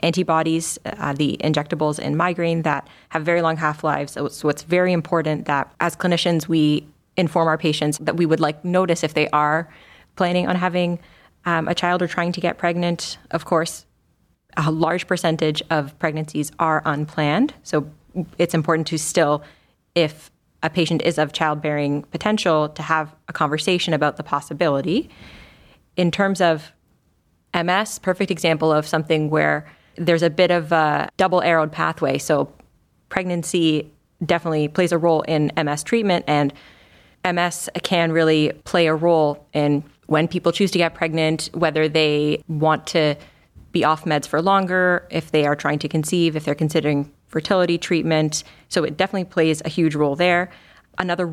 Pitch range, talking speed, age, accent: 155-175 Hz, 160 wpm, 20-39, American